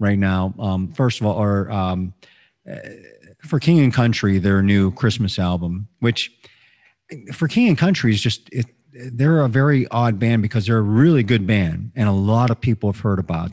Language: English